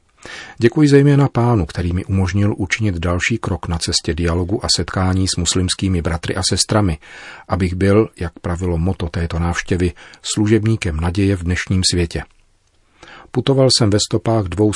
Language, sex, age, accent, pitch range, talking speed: Czech, male, 40-59, native, 85-105 Hz, 145 wpm